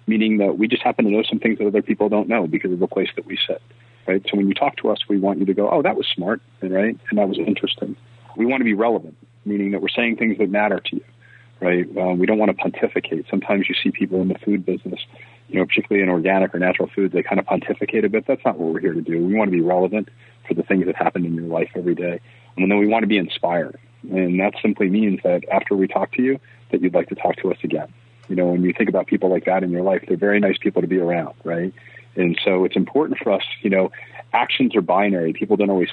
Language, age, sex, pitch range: English, 40-59, male, 90-110 Hz